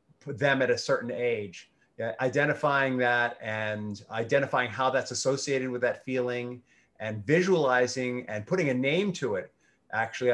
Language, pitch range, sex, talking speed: English, 125-160 Hz, male, 145 wpm